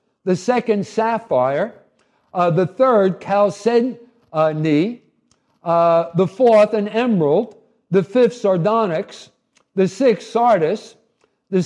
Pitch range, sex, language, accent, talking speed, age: 170-220 Hz, male, English, American, 100 wpm, 60-79